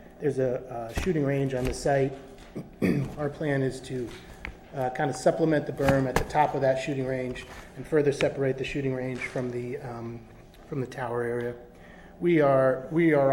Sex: male